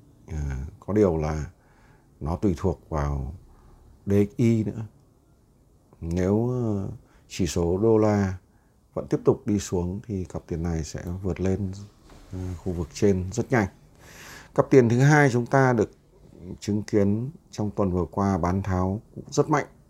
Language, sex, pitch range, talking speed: Vietnamese, male, 90-115 Hz, 155 wpm